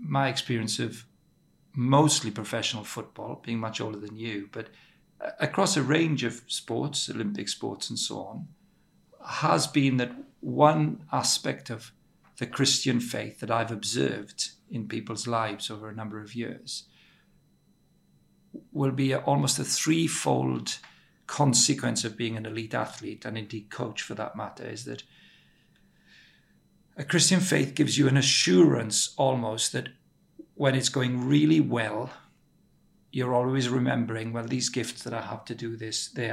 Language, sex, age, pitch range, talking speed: English, male, 50-69, 110-135 Hz, 145 wpm